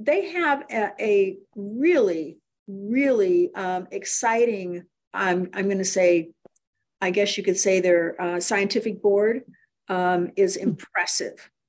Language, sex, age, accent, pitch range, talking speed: English, female, 50-69, American, 190-245 Hz, 125 wpm